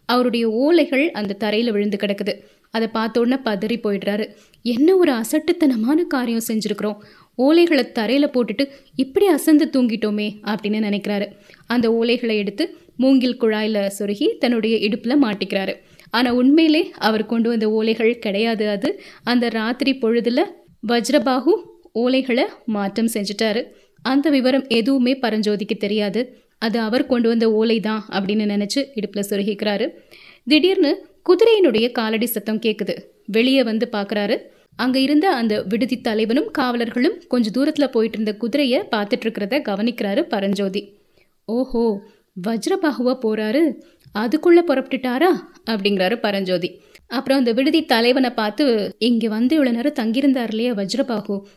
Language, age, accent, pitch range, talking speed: Tamil, 20-39, native, 215-270 Hz, 120 wpm